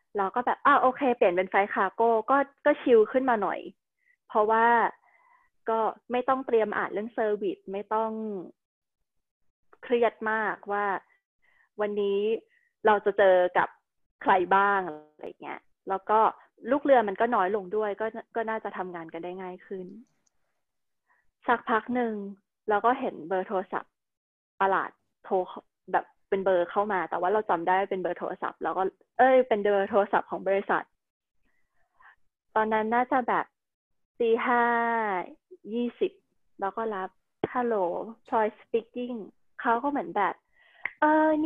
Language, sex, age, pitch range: Thai, female, 20-39, 195-245 Hz